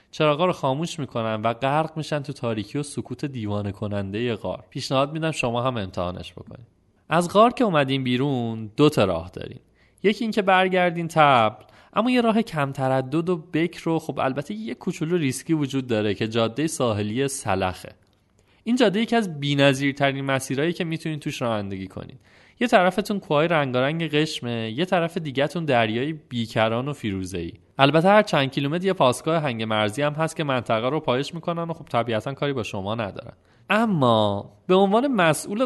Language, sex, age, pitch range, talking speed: Persian, male, 30-49, 110-160 Hz, 175 wpm